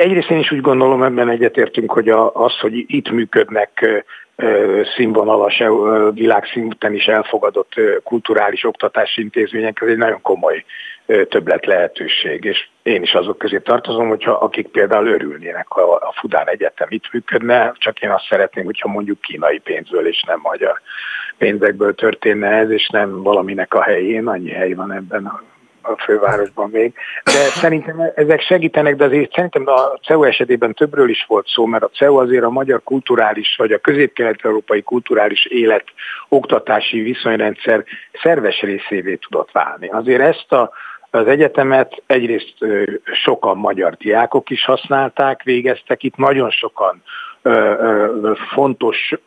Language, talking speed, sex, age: Hungarian, 145 wpm, male, 50-69